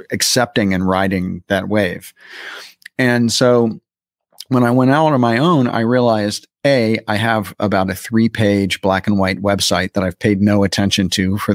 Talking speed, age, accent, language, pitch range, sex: 170 wpm, 40-59, American, English, 100-120 Hz, male